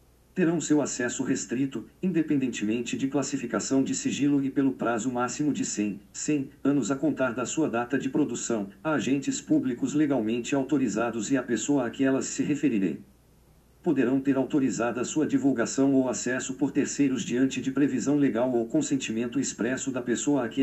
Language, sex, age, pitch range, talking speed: Portuguese, male, 50-69, 120-145 Hz, 170 wpm